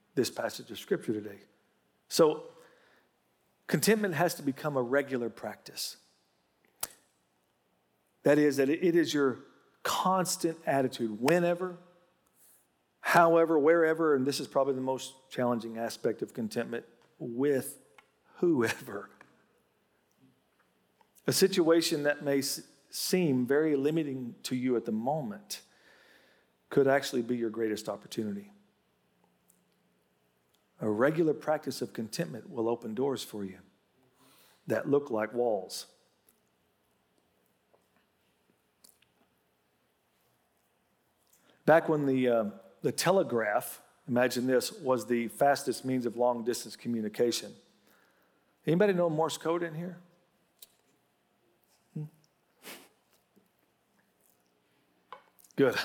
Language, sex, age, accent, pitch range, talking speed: English, male, 50-69, American, 105-160 Hz, 100 wpm